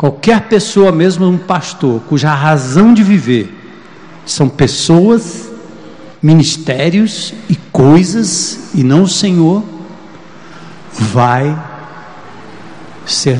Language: Portuguese